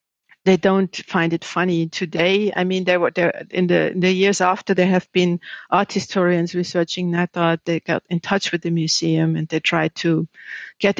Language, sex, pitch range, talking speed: English, female, 170-200 Hz, 195 wpm